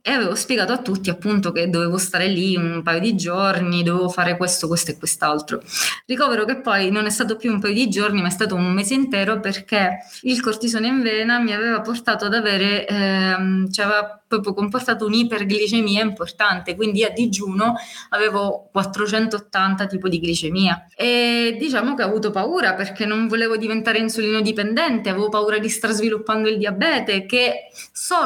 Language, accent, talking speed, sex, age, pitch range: Italian, native, 175 wpm, female, 20-39, 195-235 Hz